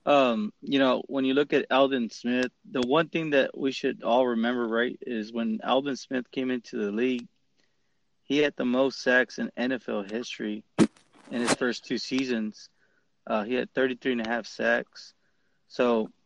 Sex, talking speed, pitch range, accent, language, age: male, 175 wpm, 120-135 Hz, American, English, 20-39